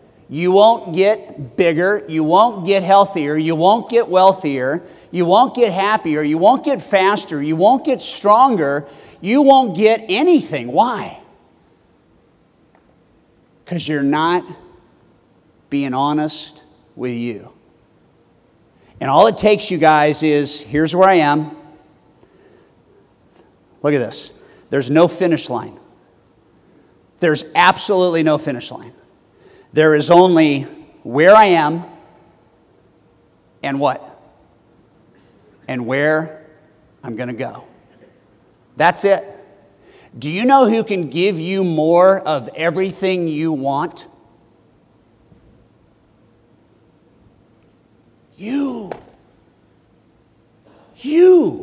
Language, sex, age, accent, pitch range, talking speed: English, male, 50-69, American, 150-210 Hz, 105 wpm